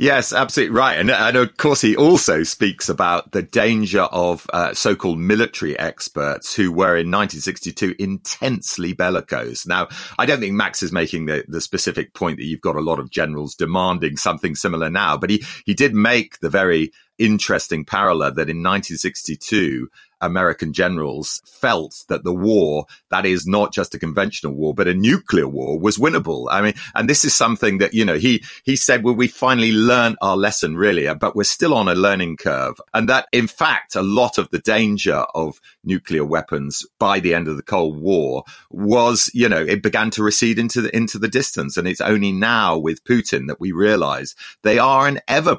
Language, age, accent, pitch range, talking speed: English, 40-59, British, 85-115 Hz, 195 wpm